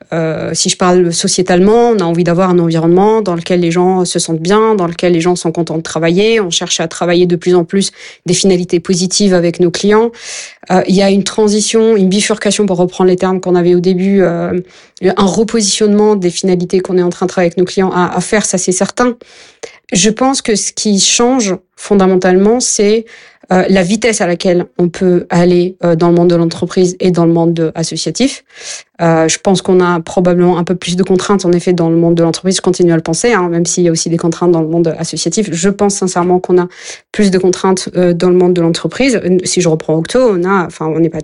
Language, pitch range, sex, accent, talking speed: French, 170-200 Hz, female, French, 235 wpm